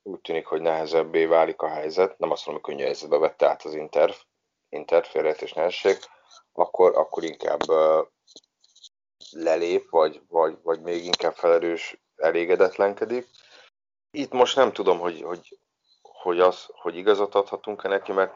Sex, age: male, 30-49